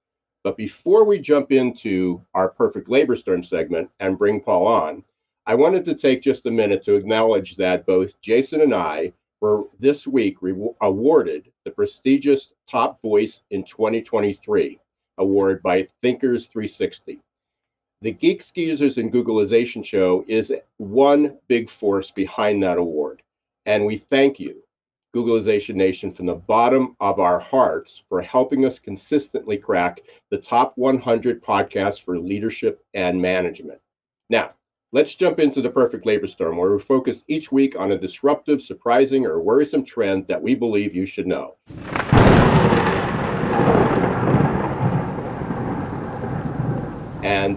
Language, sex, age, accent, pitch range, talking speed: English, male, 50-69, American, 100-140 Hz, 135 wpm